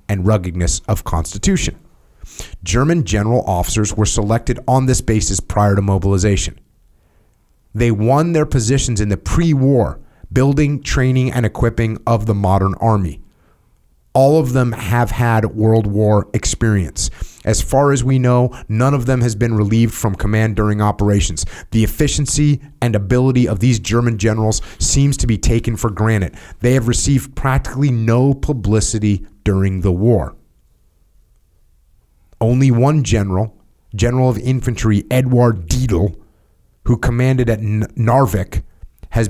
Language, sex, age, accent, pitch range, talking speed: English, male, 30-49, American, 95-125 Hz, 135 wpm